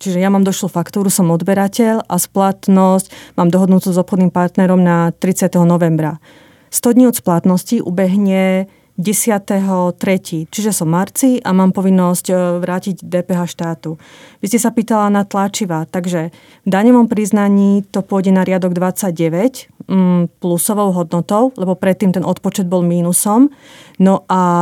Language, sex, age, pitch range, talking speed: Slovak, female, 30-49, 180-205 Hz, 140 wpm